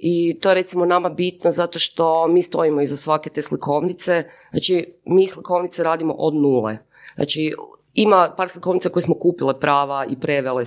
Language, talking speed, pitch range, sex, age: Croatian, 170 wpm, 150-180 Hz, female, 30-49